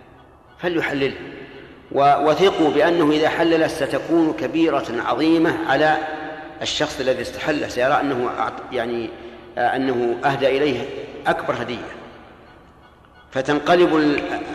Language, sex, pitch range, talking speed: Arabic, male, 125-155 Hz, 85 wpm